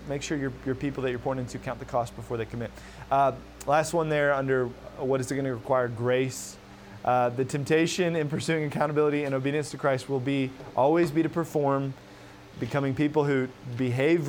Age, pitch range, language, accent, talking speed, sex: 20-39, 115-140 Hz, English, American, 195 wpm, male